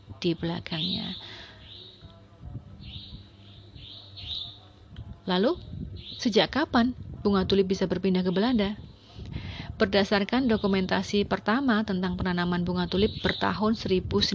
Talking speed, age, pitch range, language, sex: 80 wpm, 30-49, 175-205 Hz, Indonesian, female